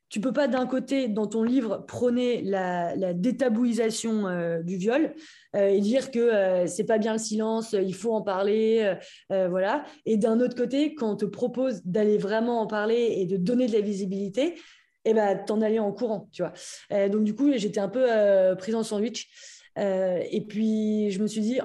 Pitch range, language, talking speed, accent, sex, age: 195-235 Hz, French, 215 wpm, French, female, 20-39